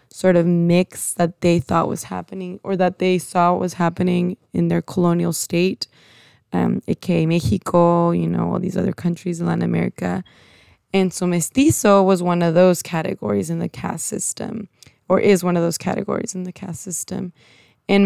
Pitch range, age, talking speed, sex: 165-190 Hz, 20-39, 175 wpm, female